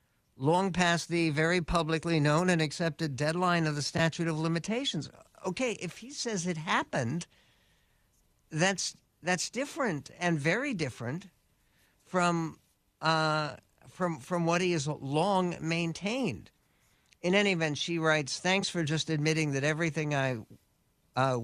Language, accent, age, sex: English, American, 60-79, male